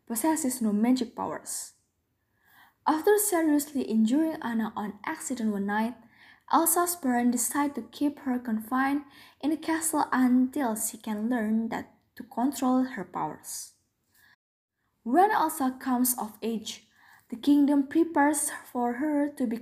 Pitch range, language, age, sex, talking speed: 230-300 Hz, English, 10-29, female, 130 wpm